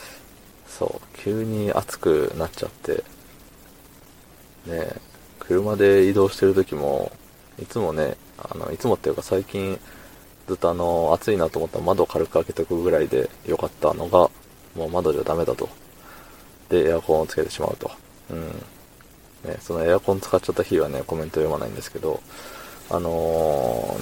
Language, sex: Japanese, male